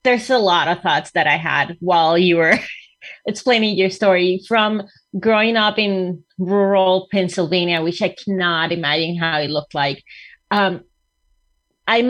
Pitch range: 170-205 Hz